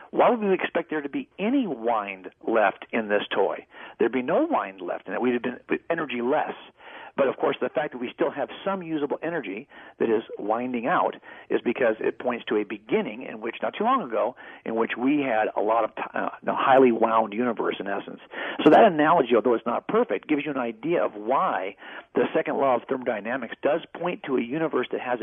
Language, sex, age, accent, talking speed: English, male, 50-69, American, 215 wpm